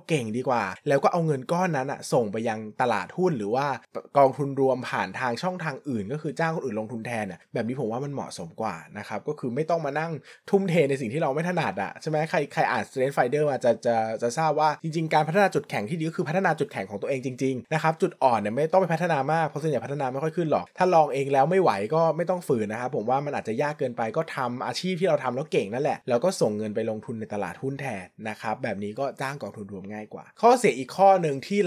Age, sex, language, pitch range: 20-39, male, Thai, 120-165 Hz